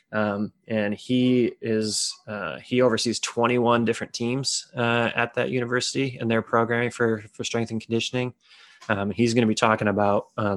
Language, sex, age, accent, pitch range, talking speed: English, male, 20-39, American, 105-120 Hz, 170 wpm